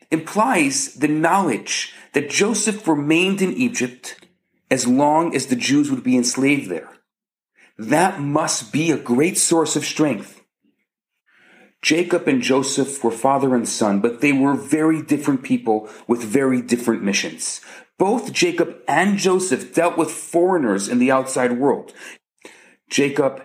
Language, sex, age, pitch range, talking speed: English, male, 40-59, 130-190 Hz, 140 wpm